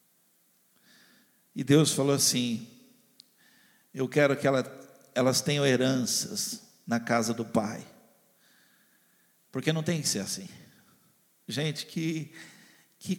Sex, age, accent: male, 60-79, Brazilian